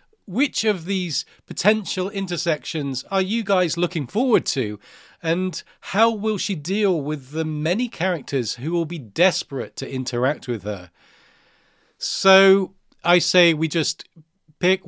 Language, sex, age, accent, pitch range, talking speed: English, male, 40-59, British, 135-175 Hz, 135 wpm